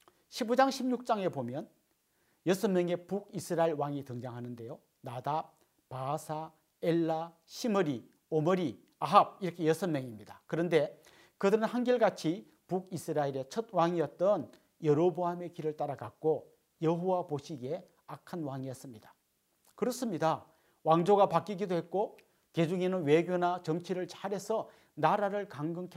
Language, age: Korean, 40-59